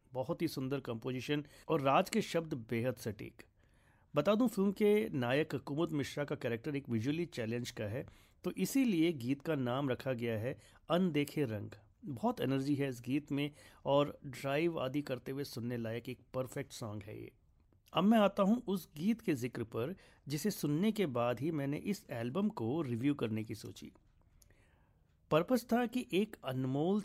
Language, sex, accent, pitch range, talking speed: Hindi, male, native, 120-165 Hz, 165 wpm